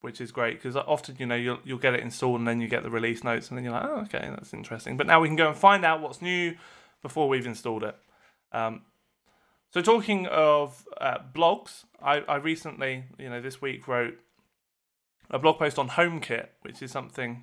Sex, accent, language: male, British, English